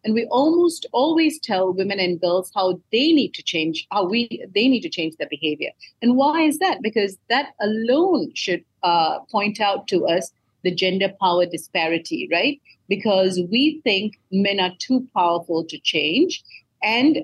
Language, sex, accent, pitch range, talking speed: English, female, Indian, 175-240 Hz, 170 wpm